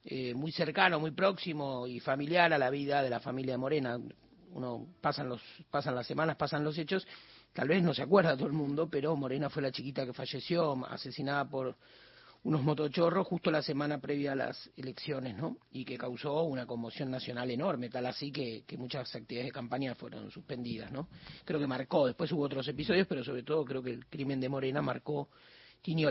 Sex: male